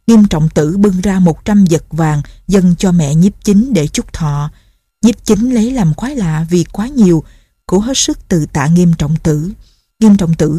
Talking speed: 205 wpm